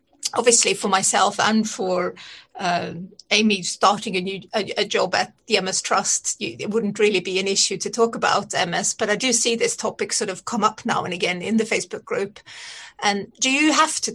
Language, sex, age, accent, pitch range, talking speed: English, female, 30-49, British, 195-230 Hz, 210 wpm